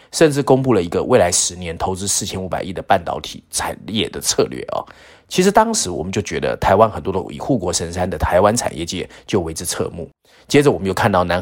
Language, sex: Chinese, male